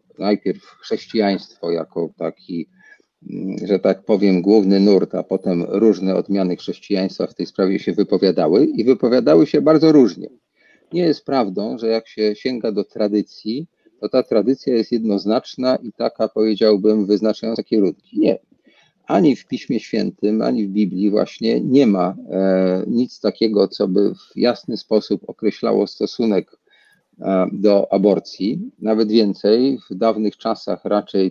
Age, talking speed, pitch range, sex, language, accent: 40-59, 135 wpm, 100-115 Hz, male, Polish, native